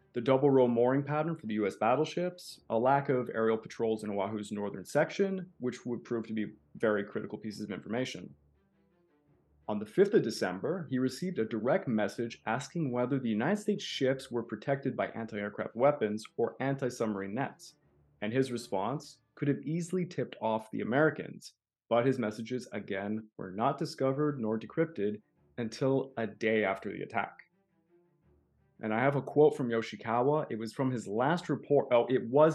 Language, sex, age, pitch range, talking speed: English, male, 30-49, 110-155 Hz, 170 wpm